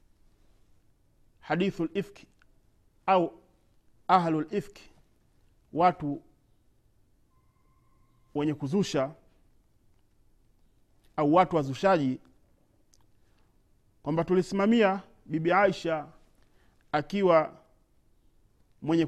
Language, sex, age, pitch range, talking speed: Swahili, male, 40-59, 130-185 Hz, 55 wpm